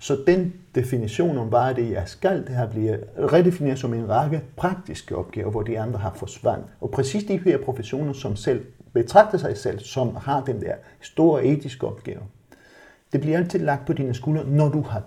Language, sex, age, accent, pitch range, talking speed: Danish, male, 50-69, native, 120-145 Hz, 200 wpm